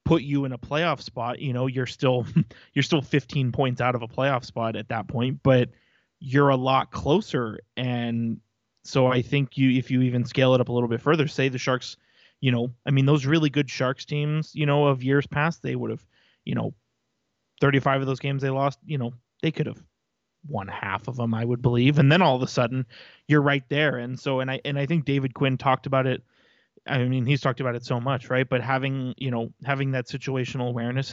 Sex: male